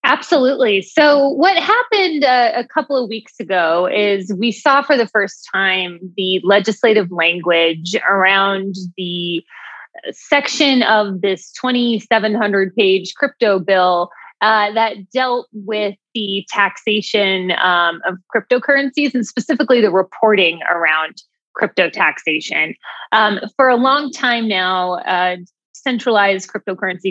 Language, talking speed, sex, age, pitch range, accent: English, 120 wpm, female, 20-39, 190-240 Hz, American